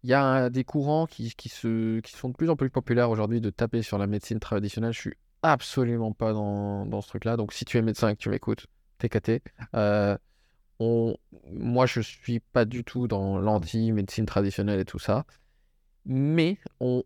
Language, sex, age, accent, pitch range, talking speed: French, male, 20-39, French, 100-130 Hz, 210 wpm